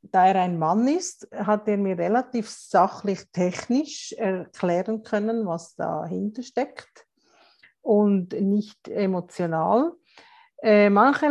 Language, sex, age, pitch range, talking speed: German, female, 50-69, 185-220 Hz, 105 wpm